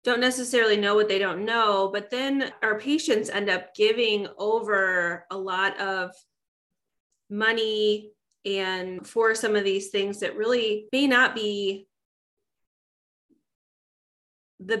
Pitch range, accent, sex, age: 185-225 Hz, American, female, 20-39